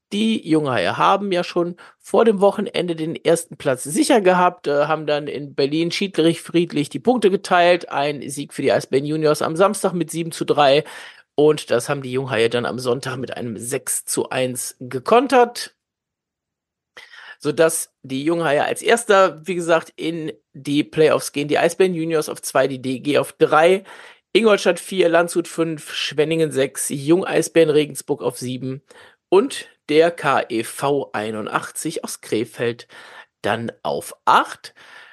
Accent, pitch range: German, 145-200 Hz